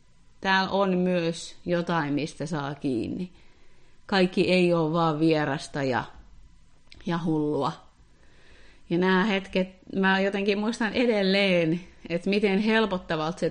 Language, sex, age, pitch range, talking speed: Finnish, female, 30-49, 165-200 Hz, 115 wpm